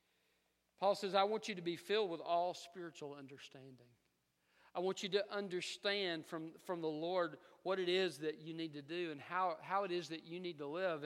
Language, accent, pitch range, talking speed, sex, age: English, American, 145-190 Hz, 210 wpm, male, 50-69